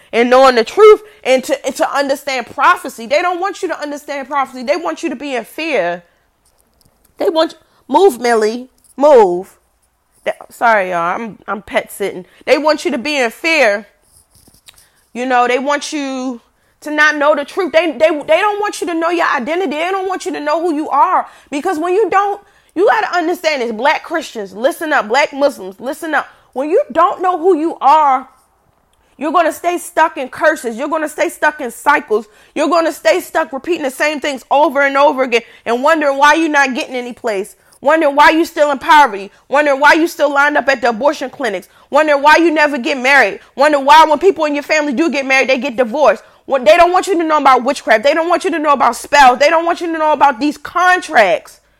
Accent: American